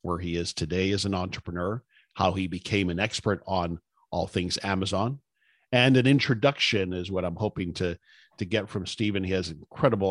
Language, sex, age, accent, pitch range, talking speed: English, male, 50-69, American, 90-115 Hz, 190 wpm